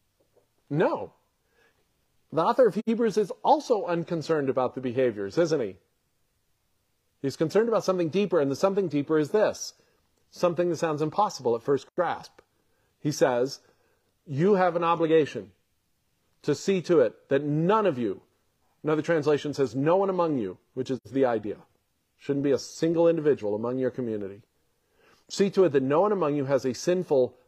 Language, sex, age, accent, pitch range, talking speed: English, male, 50-69, American, 130-175 Hz, 165 wpm